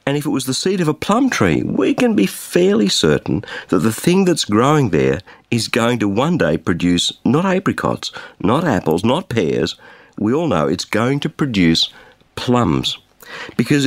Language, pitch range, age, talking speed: English, 115-190 Hz, 50-69, 180 wpm